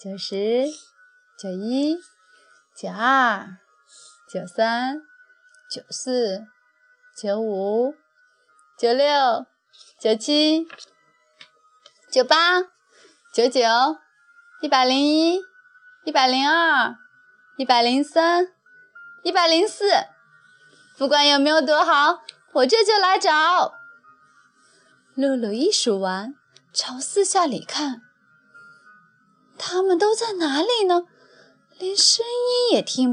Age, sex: 20-39, female